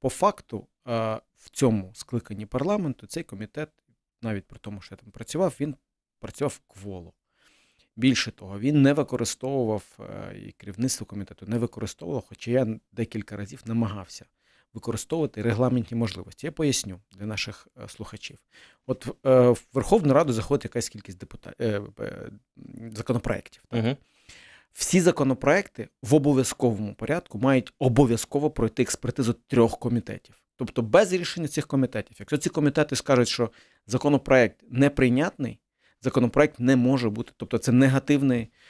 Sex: male